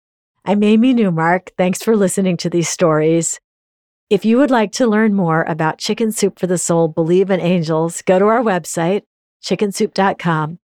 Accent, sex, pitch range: American, female, 165-210 Hz